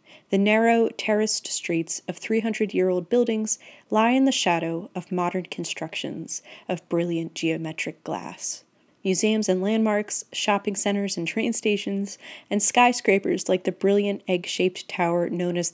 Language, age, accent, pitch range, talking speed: English, 30-49, American, 180-225 Hz, 135 wpm